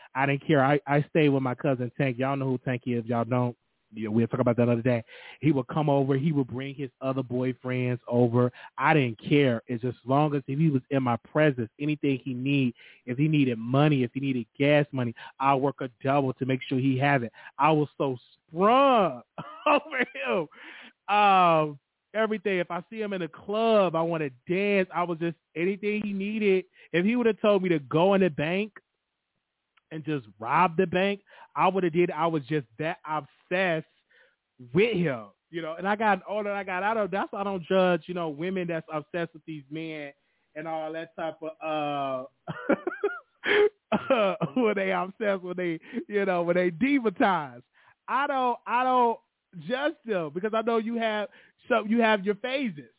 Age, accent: 20-39, American